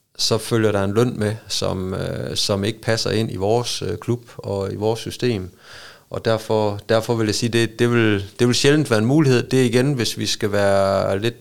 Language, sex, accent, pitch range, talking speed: Danish, male, native, 100-120 Hz, 215 wpm